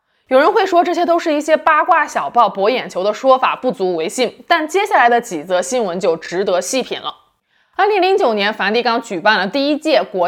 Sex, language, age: female, Chinese, 20-39